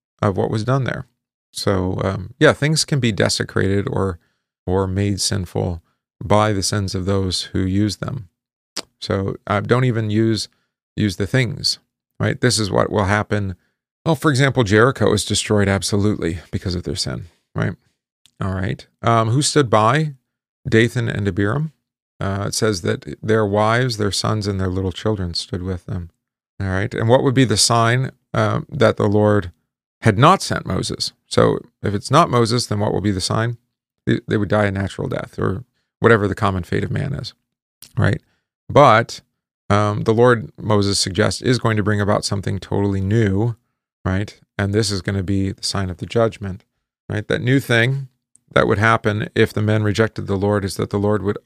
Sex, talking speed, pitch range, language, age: male, 190 wpm, 100-120 Hz, English, 40-59